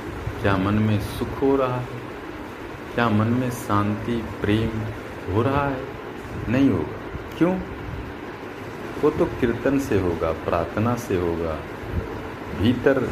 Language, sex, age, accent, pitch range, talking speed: Hindi, male, 50-69, native, 95-115 Hz, 125 wpm